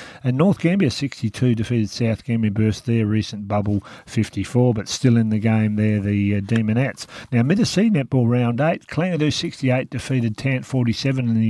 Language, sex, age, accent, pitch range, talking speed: English, male, 50-69, Australian, 110-135 Hz, 170 wpm